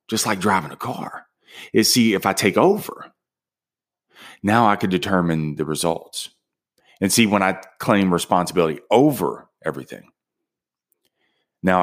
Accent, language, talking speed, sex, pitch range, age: American, English, 130 wpm, male, 90-115 Hz, 30-49